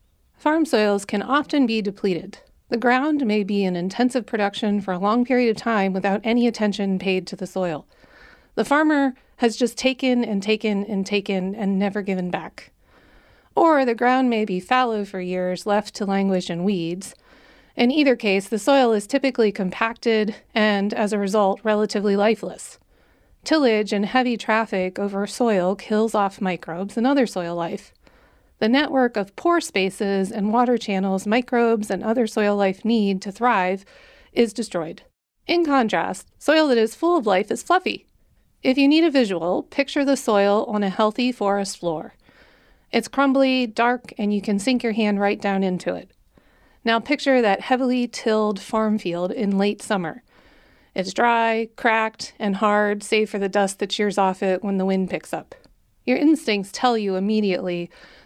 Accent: American